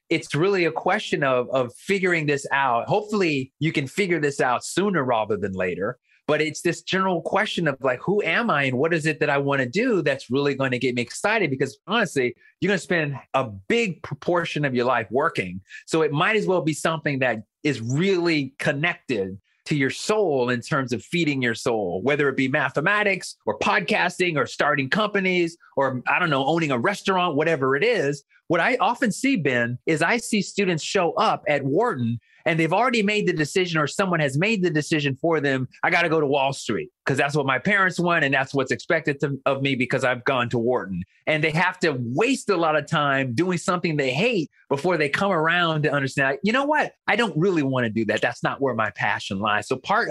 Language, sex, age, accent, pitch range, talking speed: English, male, 30-49, American, 135-180 Hz, 220 wpm